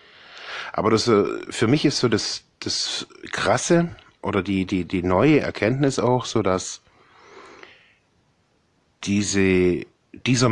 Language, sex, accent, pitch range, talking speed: German, male, German, 90-120 Hz, 115 wpm